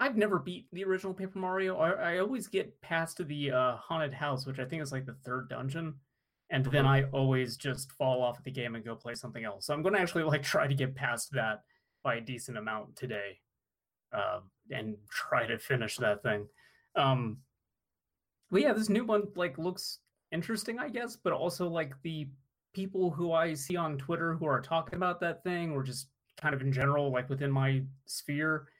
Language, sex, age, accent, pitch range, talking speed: English, male, 20-39, American, 125-165 Hz, 205 wpm